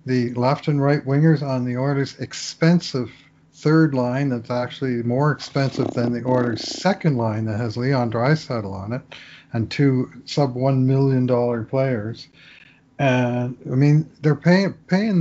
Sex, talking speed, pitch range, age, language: male, 140 wpm, 125-150 Hz, 50-69, English